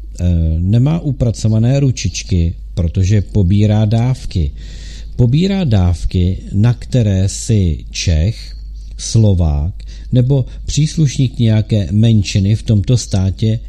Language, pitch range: Czech, 95-120 Hz